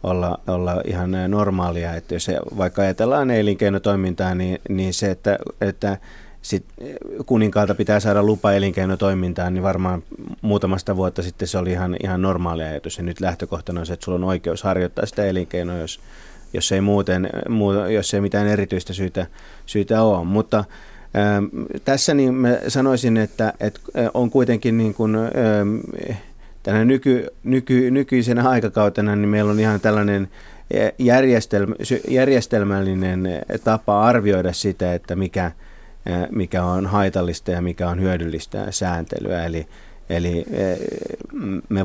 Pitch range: 90-105 Hz